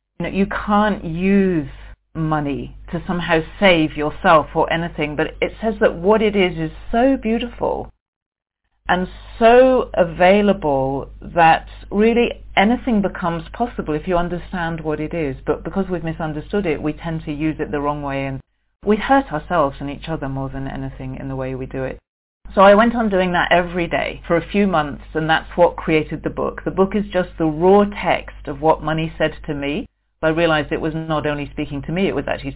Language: English